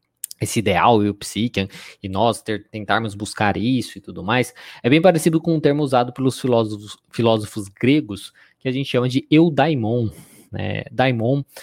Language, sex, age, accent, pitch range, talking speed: Portuguese, male, 20-39, Brazilian, 110-130 Hz, 170 wpm